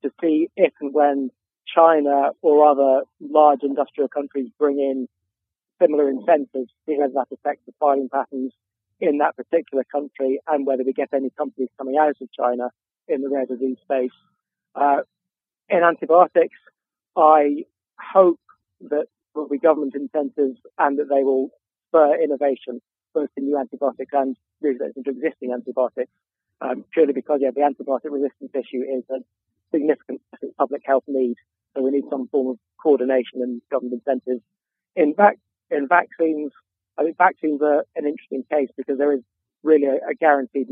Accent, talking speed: British, 155 wpm